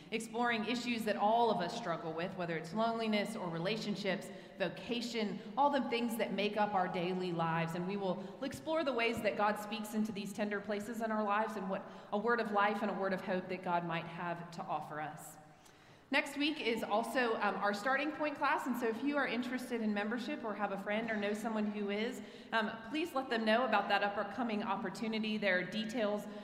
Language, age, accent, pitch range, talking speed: English, 30-49, American, 185-225 Hz, 215 wpm